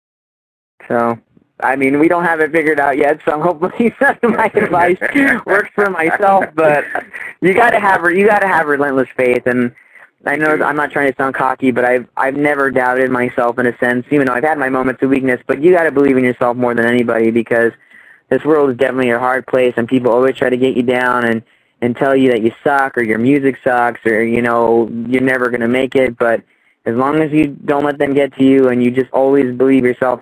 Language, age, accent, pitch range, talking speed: English, 20-39, American, 120-140 Hz, 225 wpm